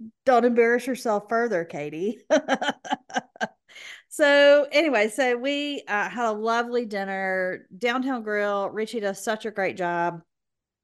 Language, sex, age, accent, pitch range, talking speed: English, female, 40-59, American, 195-260 Hz, 120 wpm